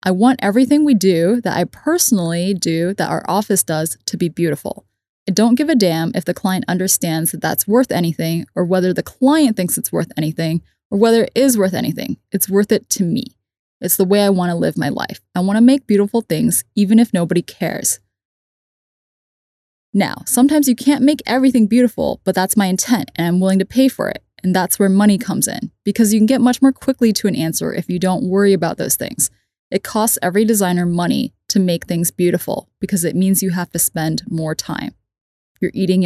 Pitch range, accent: 175-220 Hz, American